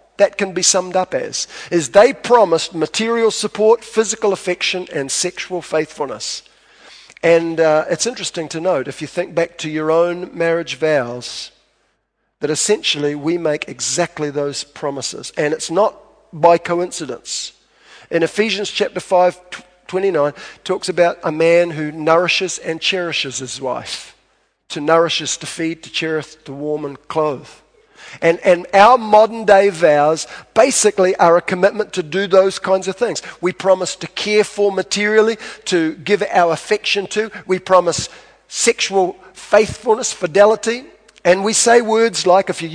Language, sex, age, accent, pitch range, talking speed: English, male, 50-69, Australian, 165-205 Hz, 150 wpm